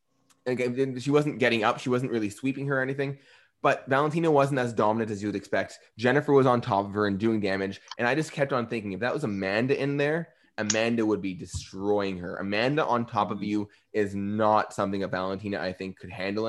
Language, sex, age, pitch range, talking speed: English, male, 20-39, 95-120 Hz, 220 wpm